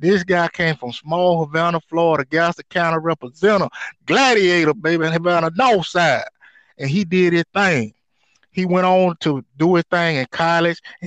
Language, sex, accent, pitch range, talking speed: English, male, American, 150-180 Hz, 155 wpm